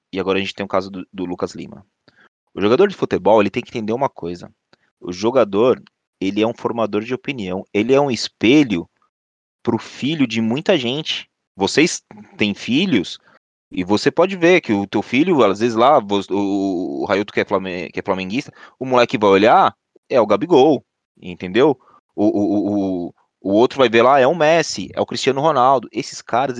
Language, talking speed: Portuguese, 190 wpm